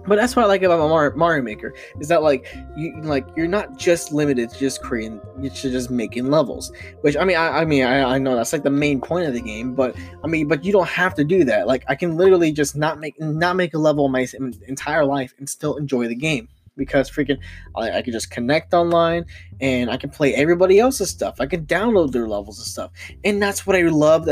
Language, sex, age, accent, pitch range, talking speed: English, male, 20-39, American, 120-165 Hz, 240 wpm